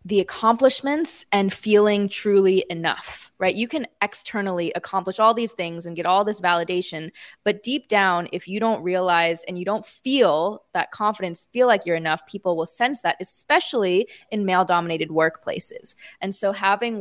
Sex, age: female, 20-39